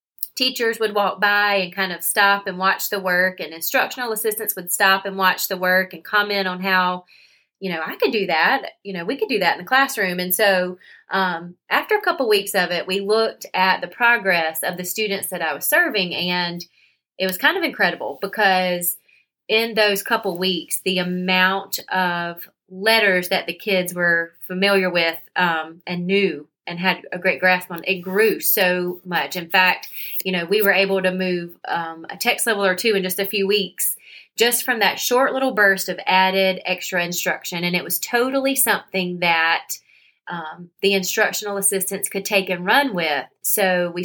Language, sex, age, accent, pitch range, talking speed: English, female, 30-49, American, 180-210 Hz, 195 wpm